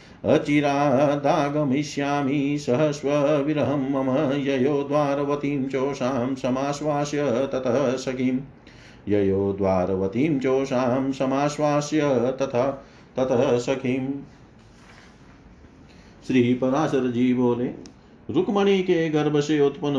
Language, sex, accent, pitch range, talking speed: Hindi, male, native, 115-145 Hz, 65 wpm